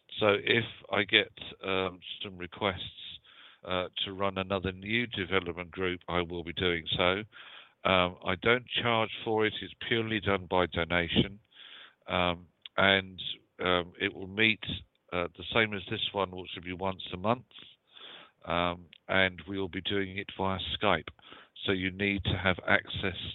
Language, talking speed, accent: English, 160 wpm, British